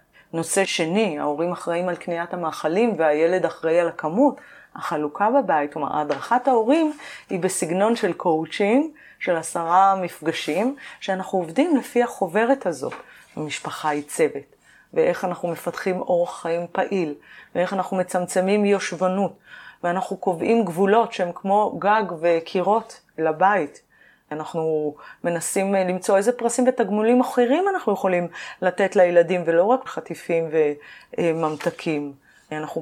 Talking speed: 120 wpm